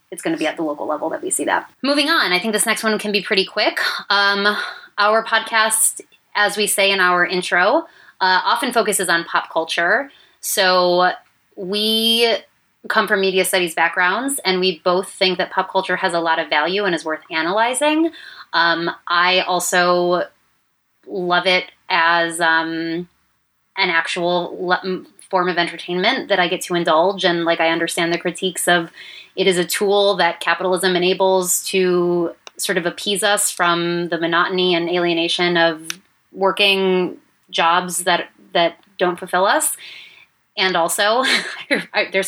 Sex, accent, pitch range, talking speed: female, American, 170-200 Hz, 160 wpm